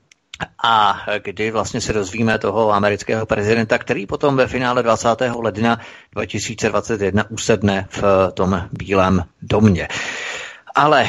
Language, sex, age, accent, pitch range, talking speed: Czech, male, 30-49, native, 100-115 Hz, 115 wpm